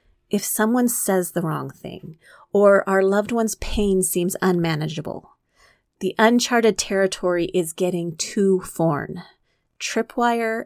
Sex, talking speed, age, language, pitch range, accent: female, 120 wpm, 30-49, English, 170-210 Hz, American